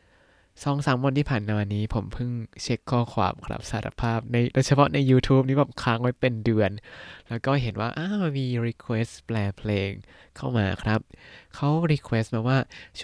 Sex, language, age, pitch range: male, Thai, 20-39, 100-135 Hz